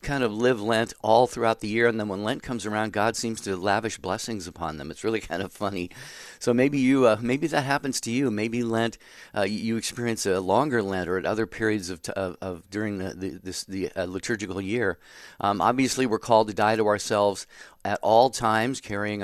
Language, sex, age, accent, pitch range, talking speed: English, male, 50-69, American, 100-120 Hz, 220 wpm